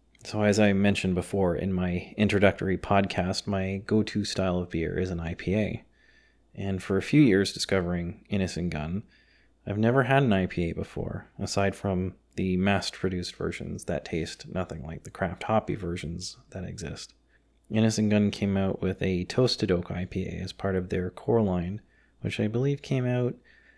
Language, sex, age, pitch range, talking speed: English, male, 30-49, 90-105 Hz, 165 wpm